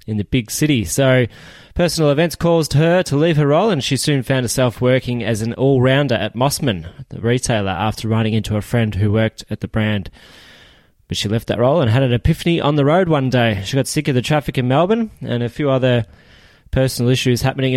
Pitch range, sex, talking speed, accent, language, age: 115-145 Hz, male, 220 wpm, Australian, English, 20-39